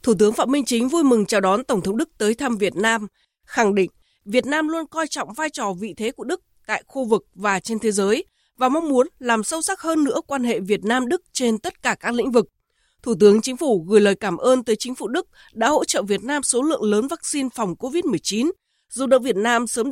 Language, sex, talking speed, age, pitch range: Vietnamese, female, 250 wpm, 20-39, 210-285 Hz